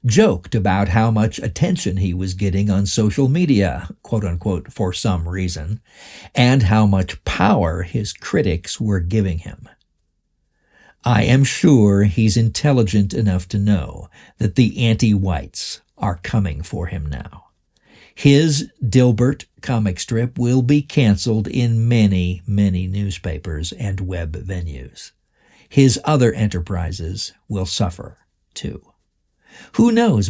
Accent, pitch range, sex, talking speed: American, 90-120 Hz, male, 125 wpm